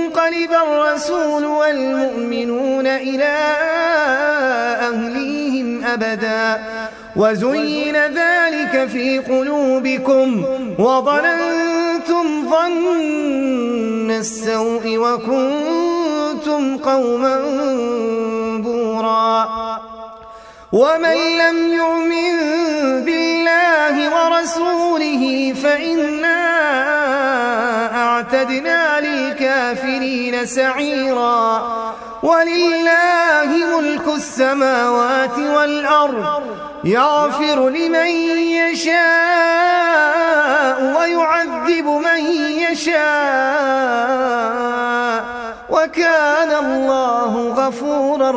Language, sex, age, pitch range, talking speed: Arabic, male, 30-49, 240-320 Hz, 45 wpm